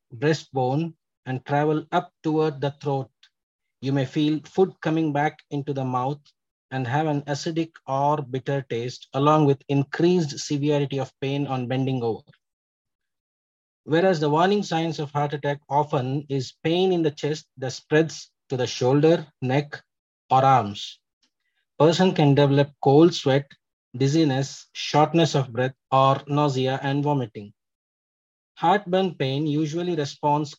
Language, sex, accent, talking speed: English, male, Indian, 135 wpm